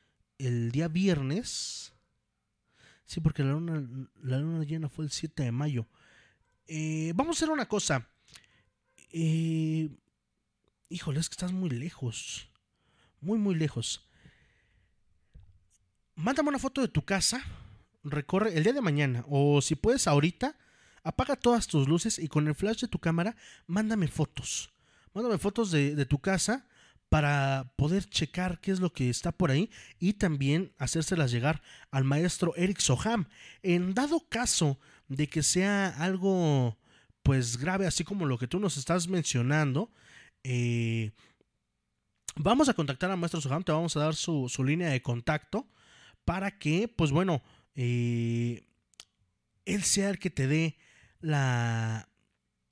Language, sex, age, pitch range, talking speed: Spanish, male, 30-49, 125-185 Hz, 145 wpm